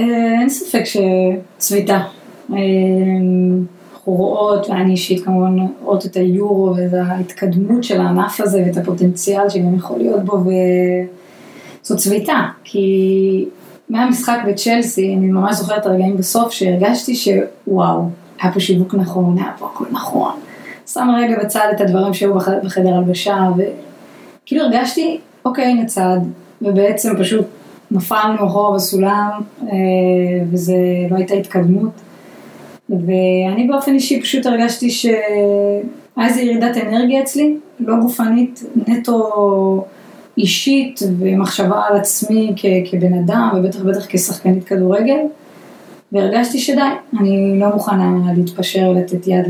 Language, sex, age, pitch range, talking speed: Hebrew, female, 20-39, 185-230 Hz, 115 wpm